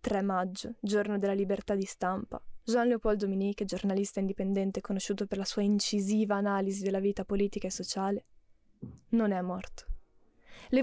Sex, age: female, 20-39